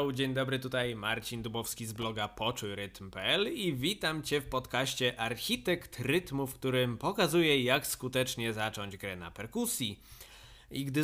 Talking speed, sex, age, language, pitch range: 140 wpm, male, 20-39, Polish, 110-155 Hz